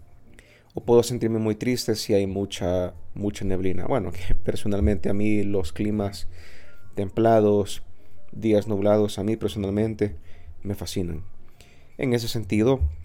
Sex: male